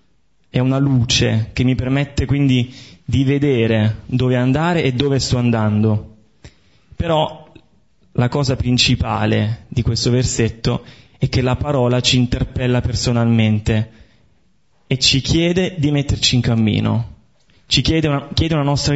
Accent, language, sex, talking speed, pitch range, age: native, Italian, male, 130 wpm, 110-130 Hz, 20-39